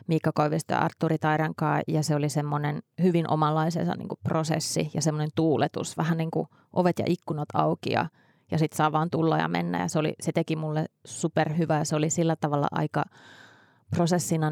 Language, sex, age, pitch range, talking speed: Finnish, female, 20-39, 155-175 Hz, 180 wpm